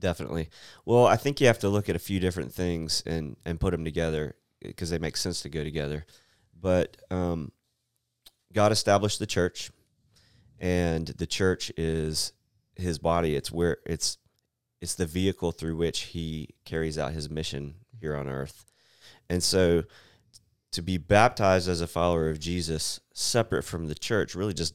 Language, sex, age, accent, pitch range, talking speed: English, male, 30-49, American, 80-100 Hz, 160 wpm